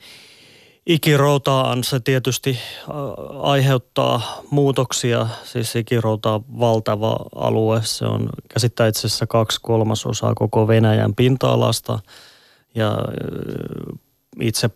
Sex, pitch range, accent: male, 110-130 Hz, native